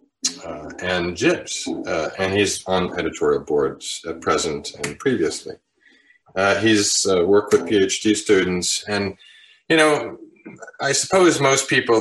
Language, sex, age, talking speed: English, male, 40-59, 140 wpm